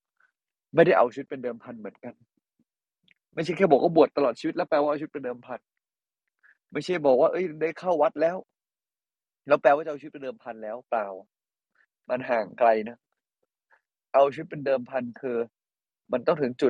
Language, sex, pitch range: Thai, male, 115-145 Hz